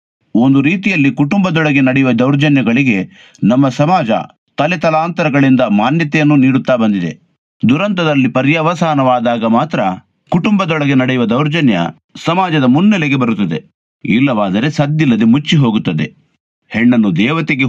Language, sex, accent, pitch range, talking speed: Kannada, male, native, 125-170 Hz, 90 wpm